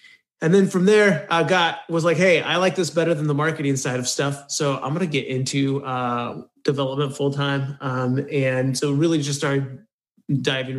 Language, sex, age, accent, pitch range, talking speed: English, male, 30-49, American, 130-150 Hz, 200 wpm